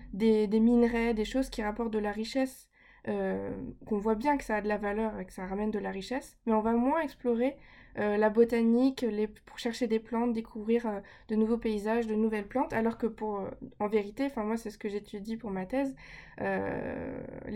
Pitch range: 205-245 Hz